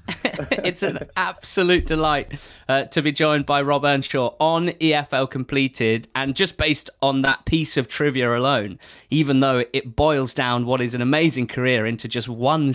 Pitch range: 120-145 Hz